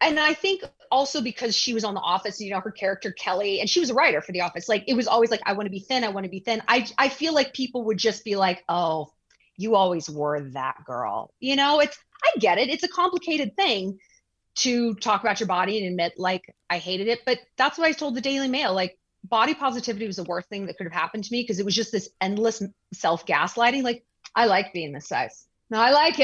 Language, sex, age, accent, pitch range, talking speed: English, female, 30-49, American, 205-305 Hz, 255 wpm